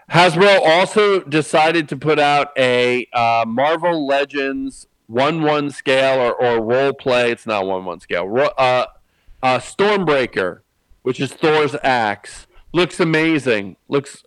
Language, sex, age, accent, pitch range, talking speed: English, male, 40-59, American, 120-145 Hz, 120 wpm